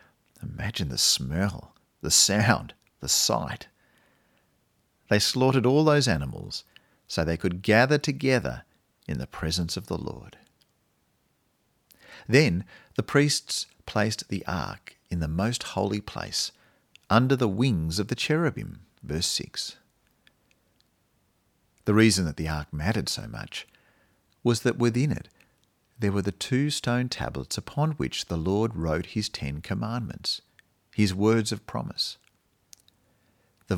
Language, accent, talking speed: English, Australian, 130 wpm